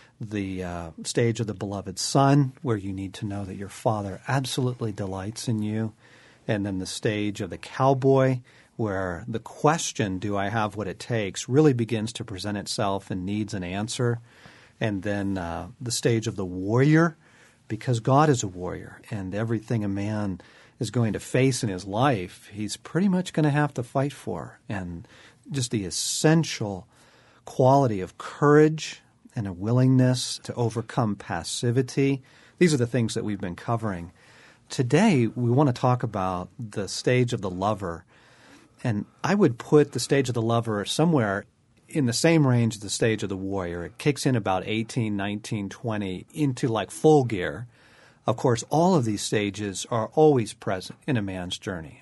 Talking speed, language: 175 wpm, English